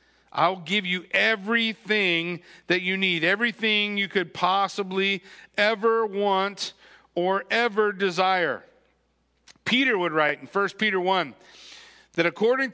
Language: English